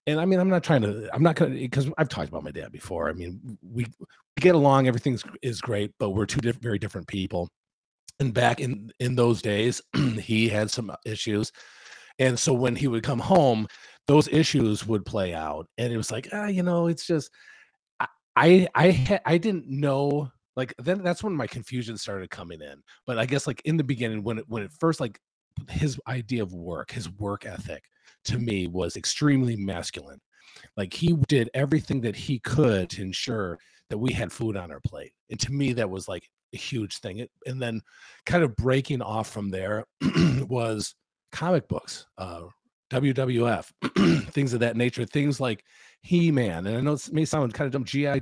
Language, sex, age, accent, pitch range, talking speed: English, male, 40-59, American, 110-145 Hz, 200 wpm